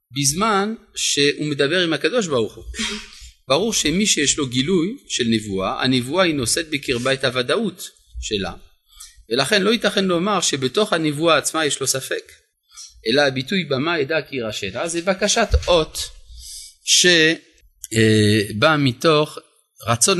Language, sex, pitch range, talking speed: Hebrew, male, 115-185 Hz, 130 wpm